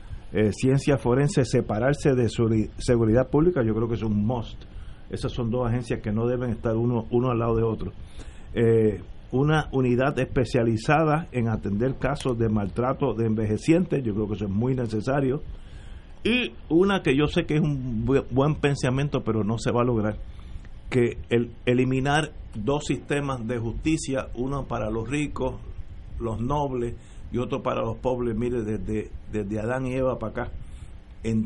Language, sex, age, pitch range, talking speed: Spanish, male, 50-69, 105-130 Hz, 170 wpm